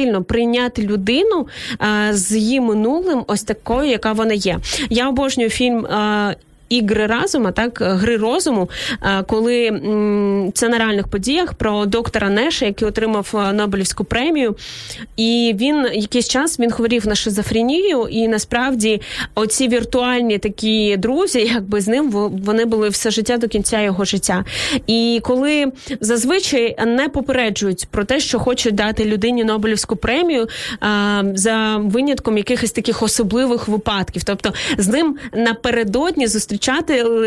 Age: 20-39